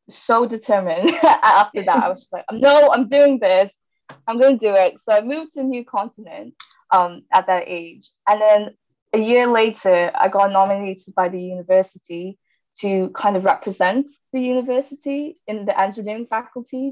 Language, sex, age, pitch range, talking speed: English, female, 10-29, 185-235 Hz, 170 wpm